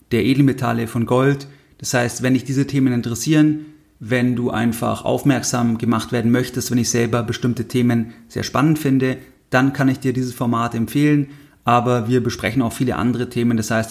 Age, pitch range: 30-49, 120-135 Hz